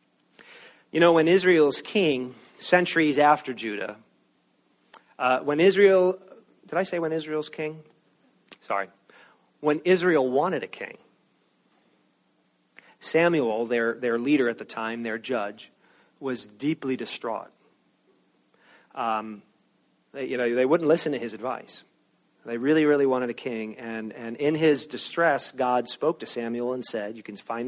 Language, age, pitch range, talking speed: English, 40-59, 115-155 Hz, 140 wpm